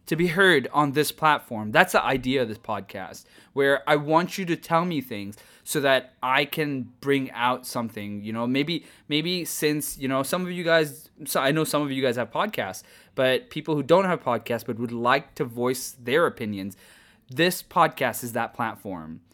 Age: 20-39